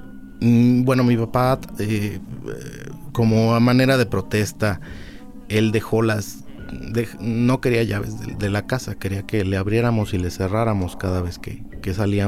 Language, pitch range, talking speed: Spanish, 95-115 Hz, 155 wpm